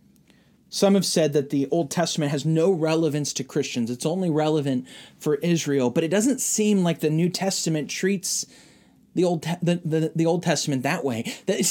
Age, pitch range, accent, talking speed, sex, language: 30-49, 145-180 Hz, American, 185 wpm, male, English